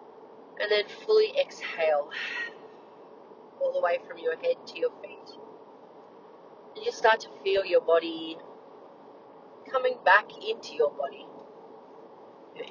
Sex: female